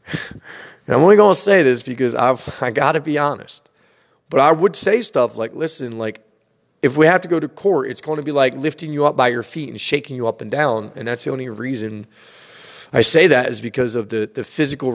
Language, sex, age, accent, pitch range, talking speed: English, male, 30-49, American, 120-155 Hz, 235 wpm